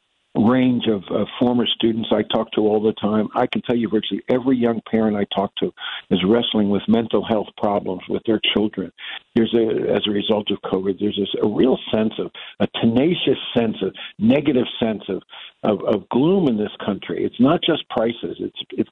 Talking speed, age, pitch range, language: 200 wpm, 60-79, 105-125 Hz, English